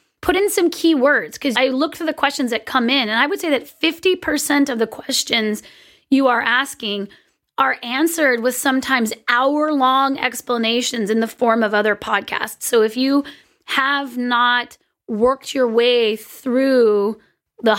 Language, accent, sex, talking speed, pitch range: English, American, female, 160 wpm, 225-275 Hz